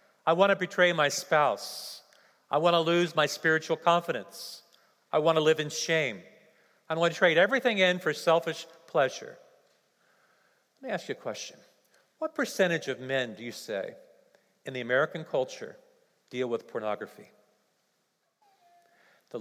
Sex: male